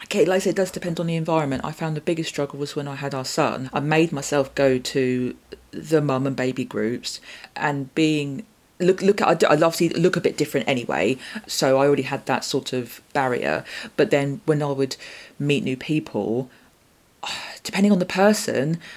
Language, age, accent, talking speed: English, 40-59, British, 195 wpm